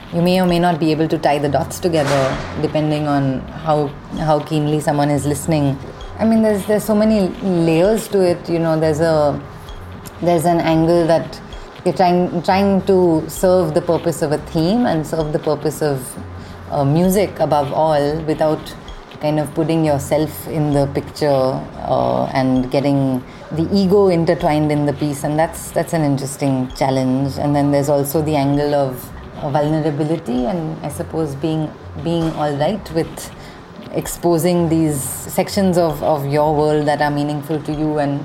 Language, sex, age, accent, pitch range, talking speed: English, female, 30-49, Indian, 145-175 Hz, 170 wpm